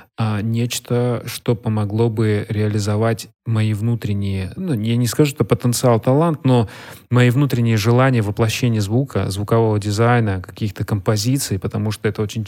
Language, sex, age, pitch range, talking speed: Russian, male, 30-49, 105-125 Hz, 135 wpm